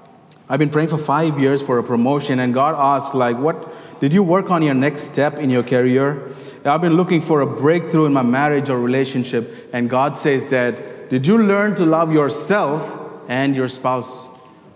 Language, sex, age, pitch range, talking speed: English, male, 30-49, 120-150 Hz, 195 wpm